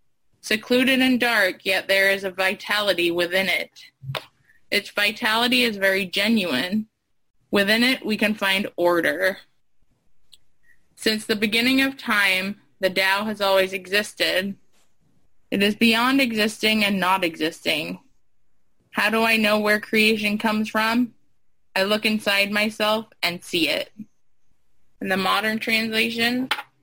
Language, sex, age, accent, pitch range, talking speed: English, female, 20-39, American, 190-225 Hz, 125 wpm